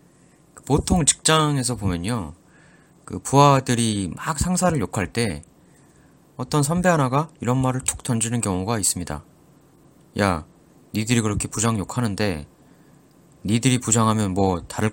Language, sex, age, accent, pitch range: Korean, male, 30-49, native, 100-145 Hz